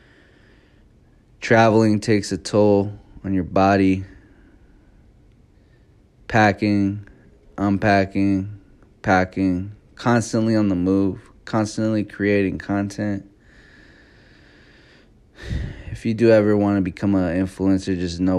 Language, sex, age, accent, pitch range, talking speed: English, male, 20-39, American, 95-105 Hz, 90 wpm